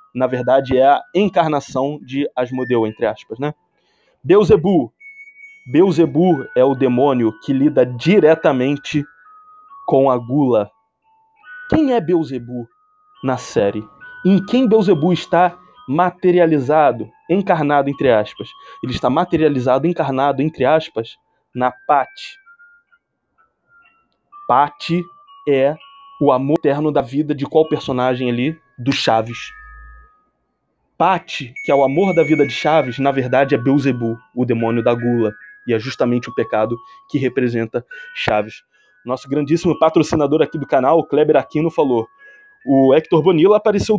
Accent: Brazilian